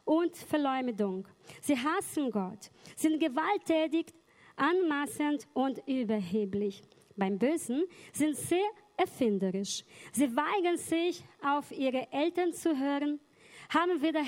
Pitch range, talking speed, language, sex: 235-330 Hz, 105 wpm, German, female